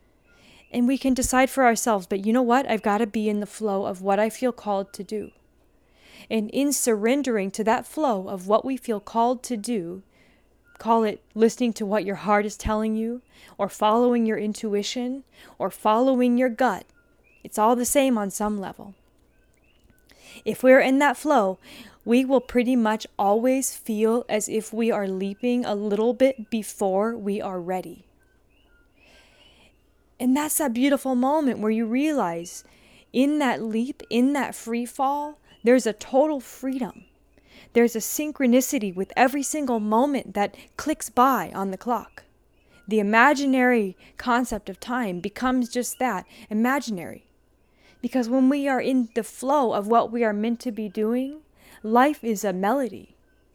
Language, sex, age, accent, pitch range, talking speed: English, female, 20-39, American, 215-255 Hz, 160 wpm